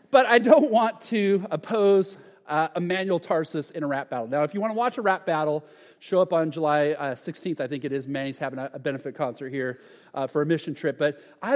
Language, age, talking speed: English, 40-59, 235 wpm